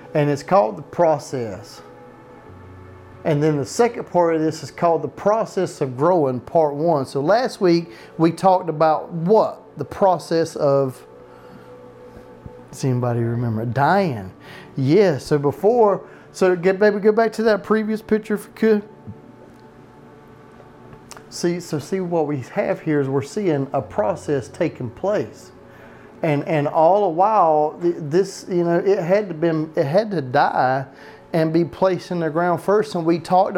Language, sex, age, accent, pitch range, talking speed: English, male, 30-49, American, 145-180 Hz, 160 wpm